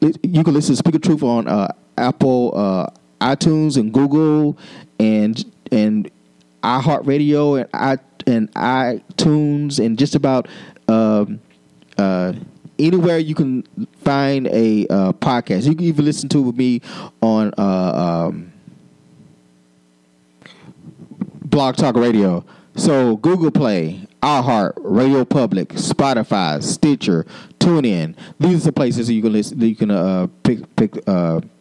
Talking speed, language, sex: 140 wpm, English, male